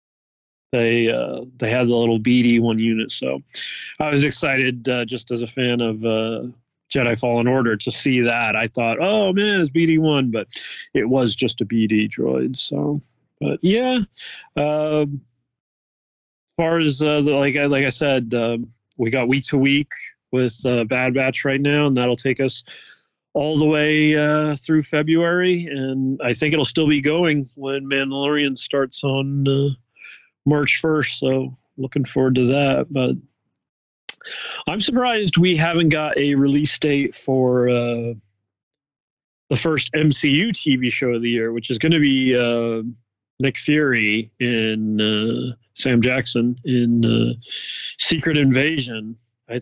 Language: English